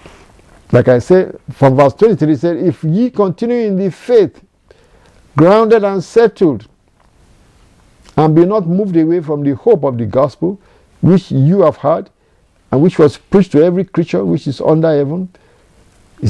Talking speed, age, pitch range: 160 wpm, 50-69, 120-165 Hz